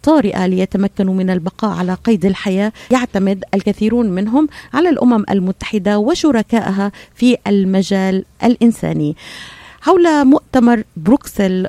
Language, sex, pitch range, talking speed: Arabic, female, 185-225 Hz, 100 wpm